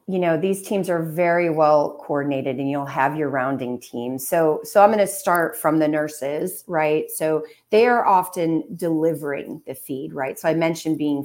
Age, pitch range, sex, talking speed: 30-49, 135-165 Hz, female, 190 wpm